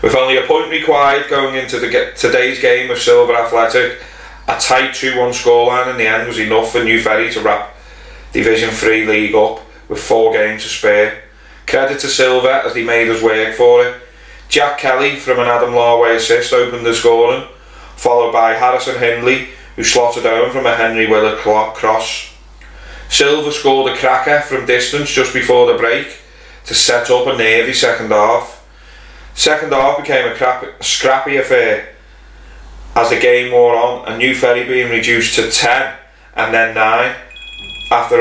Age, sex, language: 30-49, male, English